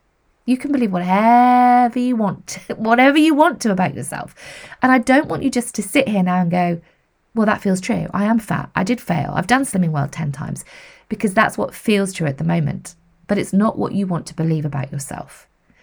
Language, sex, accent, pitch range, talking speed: English, female, British, 165-250 Hz, 220 wpm